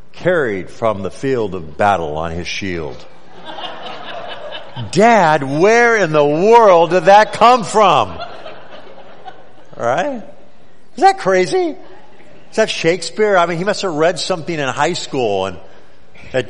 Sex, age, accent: male, 50-69, American